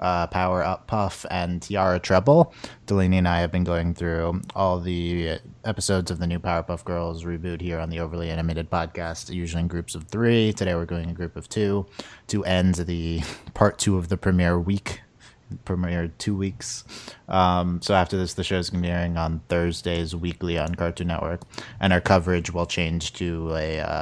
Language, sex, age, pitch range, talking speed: English, male, 30-49, 85-95 Hz, 190 wpm